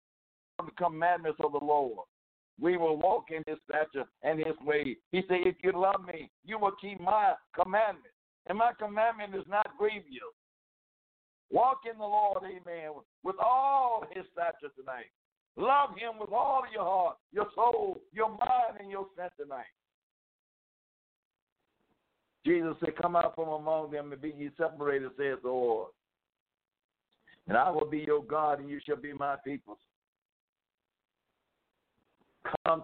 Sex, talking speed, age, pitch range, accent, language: male, 150 wpm, 60-79, 155-200 Hz, American, English